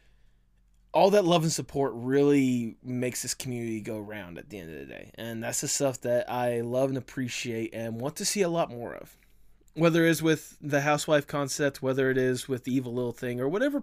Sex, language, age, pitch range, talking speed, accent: male, English, 20-39, 120-190 Hz, 220 wpm, American